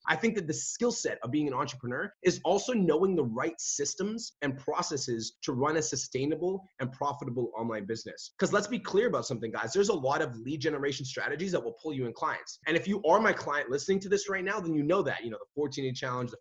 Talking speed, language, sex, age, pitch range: 250 wpm, English, male, 20-39, 130-180 Hz